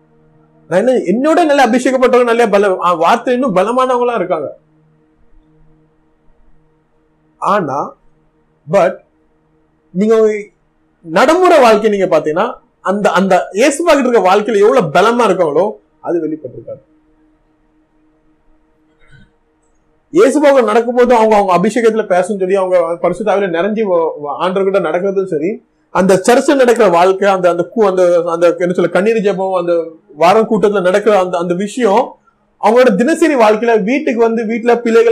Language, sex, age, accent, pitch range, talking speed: Tamil, male, 30-49, native, 155-220 Hz, 65 wpm